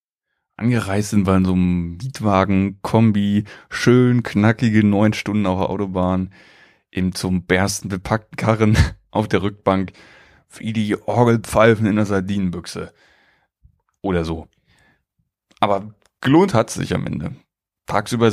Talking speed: 125 wpm